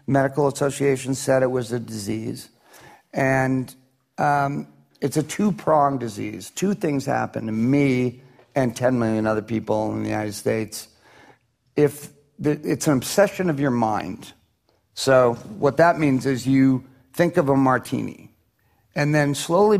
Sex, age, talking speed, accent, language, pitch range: male, 50-69, 150 wpm, American, English, 125-150 Hz